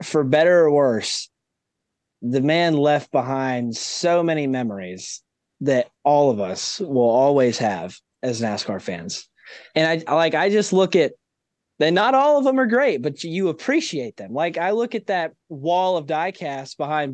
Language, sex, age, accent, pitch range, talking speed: English, male, 20-39, American, 130-180 Hz, 170 wpm